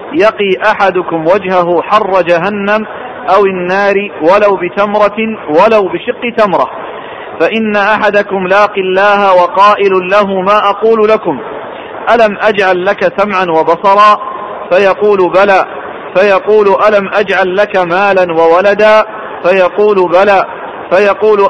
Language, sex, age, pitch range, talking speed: Arabic, male, 50-69, 185-210 Hz, 105 wpm